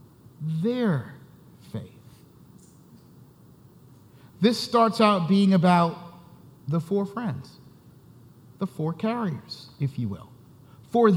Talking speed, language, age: 90 wpm, English, 50-69